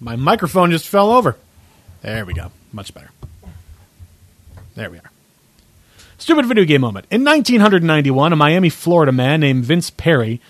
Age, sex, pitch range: 30-49, male, 130-190 Hz